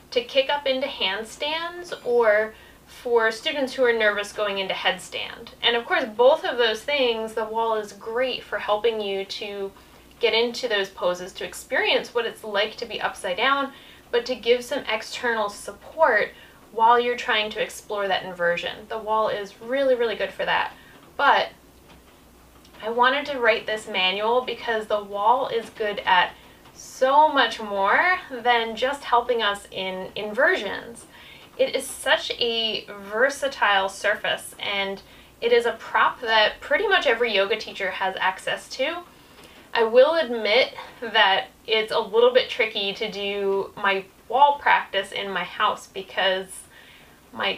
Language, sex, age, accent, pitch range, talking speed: English, female, 10-29, American, 200-265 Hz, 155 wpm